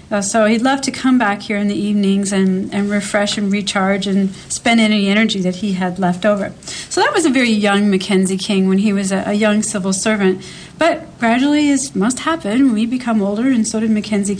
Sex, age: female, 40-59